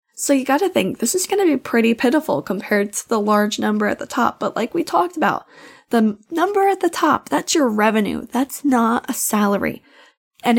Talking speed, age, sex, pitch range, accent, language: 215 wpm, 10-29, female, 210-270 Hz, American, English